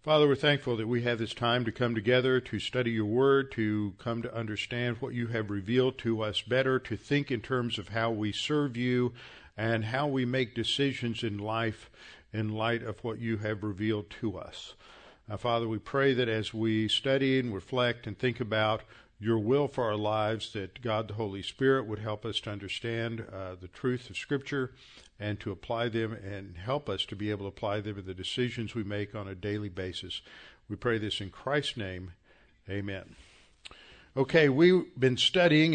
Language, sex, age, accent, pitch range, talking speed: English, male, 50-69, American, 110-130 Hz, 195 wpm